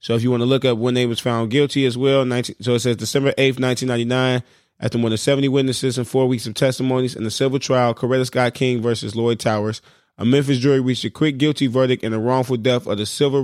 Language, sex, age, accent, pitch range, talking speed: English, male, 20-39, American, 115-135 Hz, 250 wpm